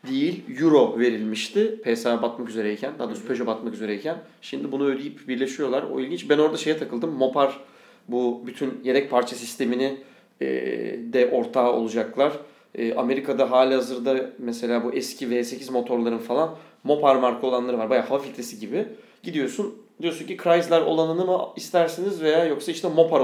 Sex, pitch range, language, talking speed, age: male, 120-145 Hz, Turkish, 150 wpm, 30-49